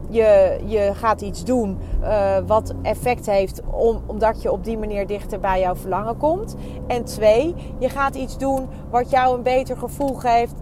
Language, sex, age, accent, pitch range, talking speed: Dutch, female, 30-49, Dutch, 190-240 Hz, 175 wpm